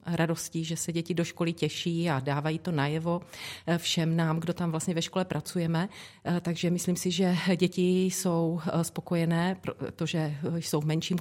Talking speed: 155 wpm